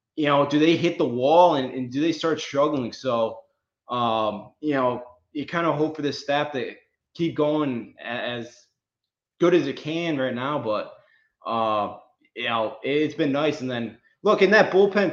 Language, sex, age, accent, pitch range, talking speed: English, male, 20-39, American, 135-185 Hz, 185 wpm